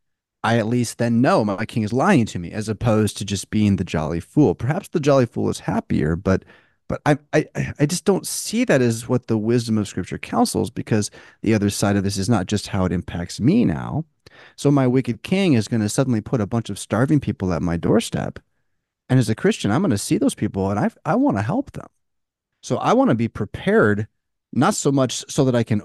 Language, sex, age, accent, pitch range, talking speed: English, male, 30-49, American, 100-125 Hz, 235 wpm